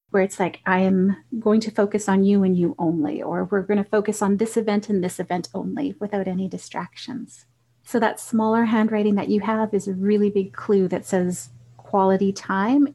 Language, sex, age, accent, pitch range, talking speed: English, female, 30-49, American, 195-245 Hz, 200 wpm